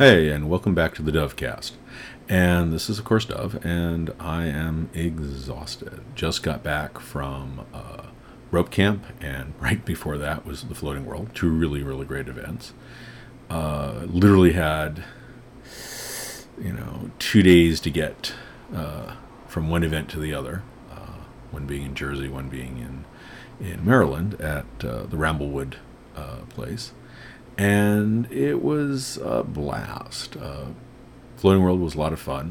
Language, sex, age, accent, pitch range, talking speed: English, male, 40-59, American, 75-95 Hz, 150 wpm